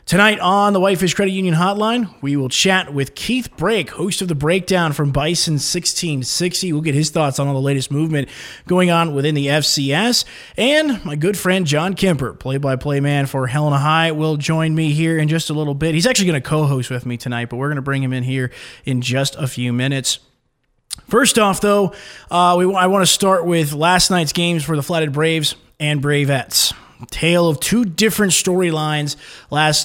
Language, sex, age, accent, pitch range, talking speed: English, male, 20-39, American, 145-185 Hz, 200 wpm